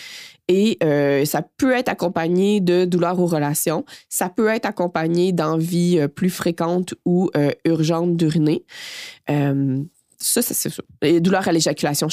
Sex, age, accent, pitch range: female, 20-39, Canadian, 145-180 Hz